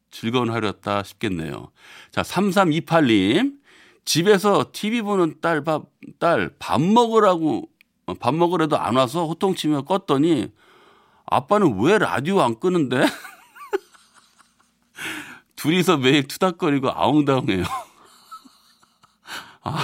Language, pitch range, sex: Korean, 115-175 Hz, male